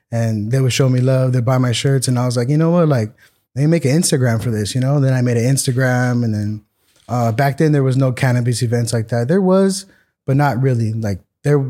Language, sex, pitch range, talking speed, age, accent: English, male, 120-140 Hz, 260 wpm, 10-29, American